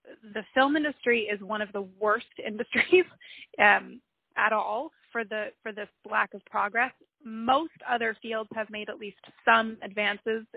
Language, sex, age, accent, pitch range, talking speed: English, female, 20-39, American, 205-240 Hz, 160 wpm